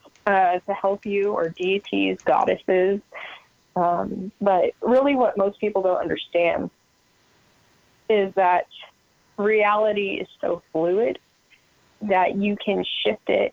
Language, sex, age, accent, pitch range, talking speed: English, female, 20-39, American, 185-220 Hz, 115 wpm